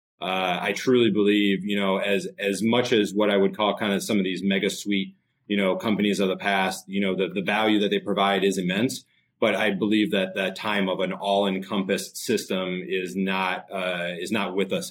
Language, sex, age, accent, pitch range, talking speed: English, male, 30-49, American, 95-105 Hz, 220 wpm